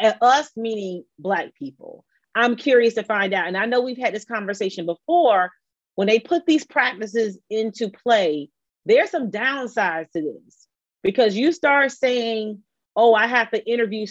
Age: 40-59